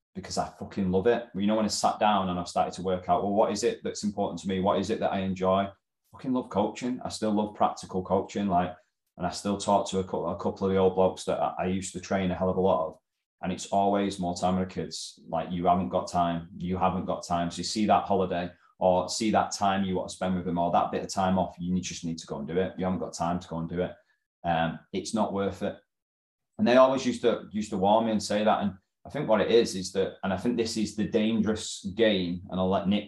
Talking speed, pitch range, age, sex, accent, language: 285 wpm, 90-105 Hz, 20-39, male, British, English